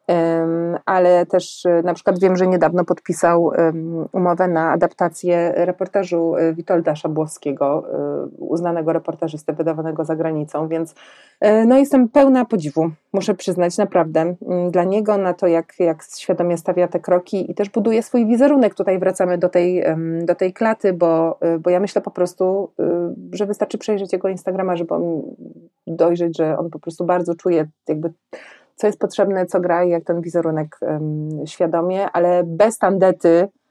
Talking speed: 140 wpm